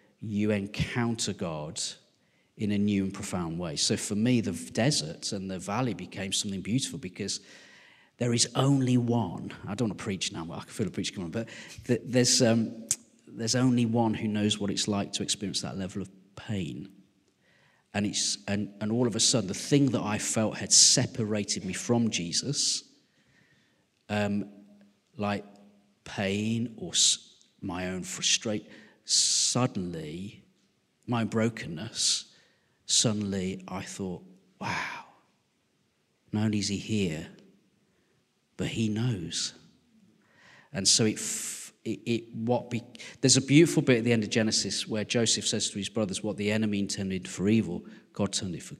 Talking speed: 155 wpm